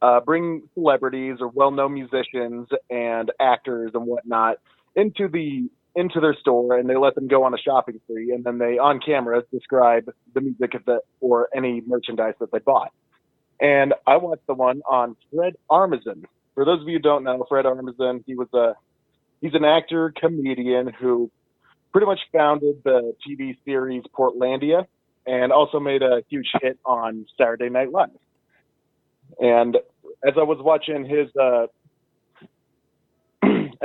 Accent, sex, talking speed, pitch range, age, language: American, male, 160 wpm, 125-150 Hz, 30-49, English